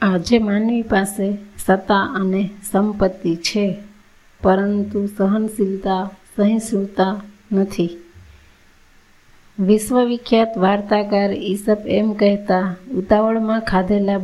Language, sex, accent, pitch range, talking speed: Gujarati, female, native, 190-215 Hz, 75 wpm